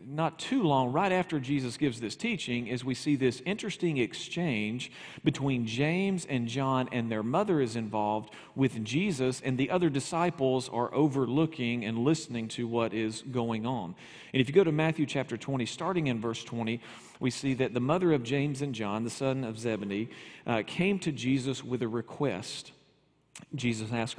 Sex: male